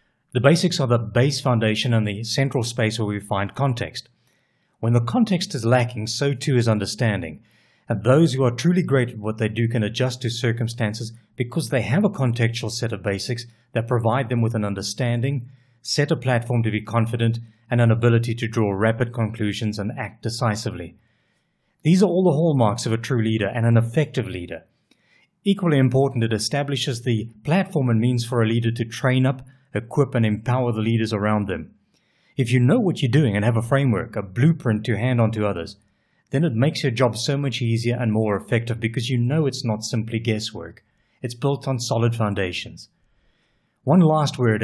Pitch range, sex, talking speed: 110-130 Hz, male, 195 wpm